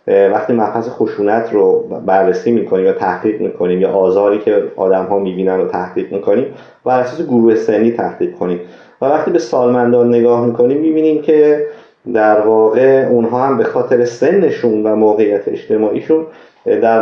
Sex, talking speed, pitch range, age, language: male, 150 wpm, 110-170 Hz, 30-49, Persian